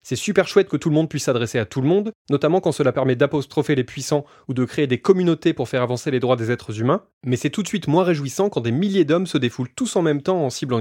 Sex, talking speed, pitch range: male, 290 wpm, 125-160 Hz